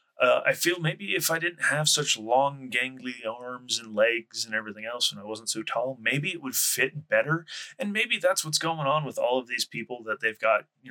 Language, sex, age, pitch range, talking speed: English, male, 30-49, 110-155 Hz, 230 wpm